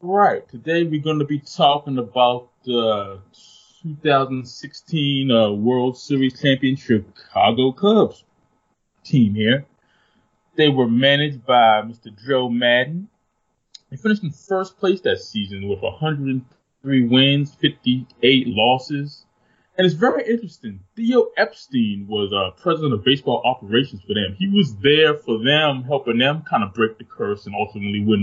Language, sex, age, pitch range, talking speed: English, male, 20-39, 110-155 Hz, 140 wpm